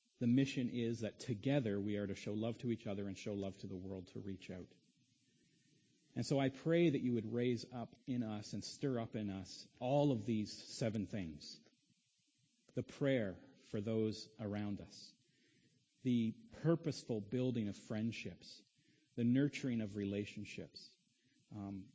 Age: 40-59